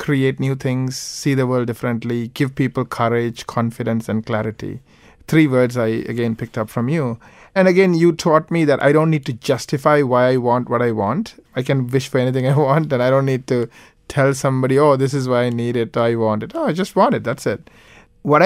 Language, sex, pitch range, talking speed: English, male, 120-145 Hz, 230 wpm